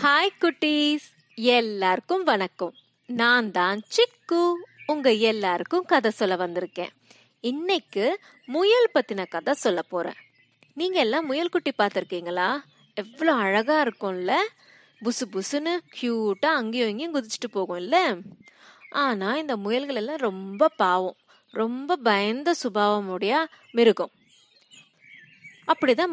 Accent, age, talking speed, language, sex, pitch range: native, 20-39, 105 wpm, Tamil, female, 205-310 Hz